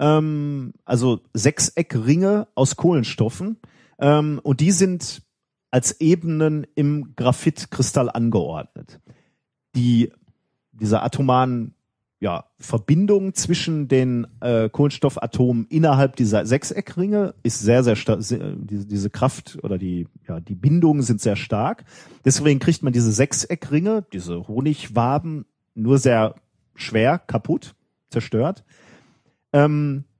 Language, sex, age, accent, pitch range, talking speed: German, male, 40-59, German, 115-160 Hz, 100 wpm